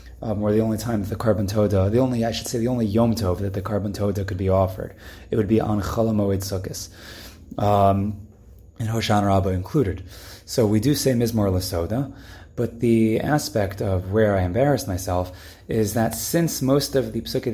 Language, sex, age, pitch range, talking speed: English, male, 20-39, 95-115 Hz, 185 wpm